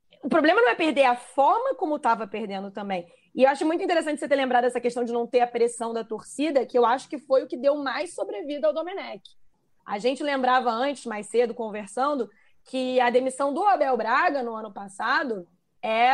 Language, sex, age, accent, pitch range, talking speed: Portuguese, female, 20-39, Brazilian, 230-290 Hz, 210 wpm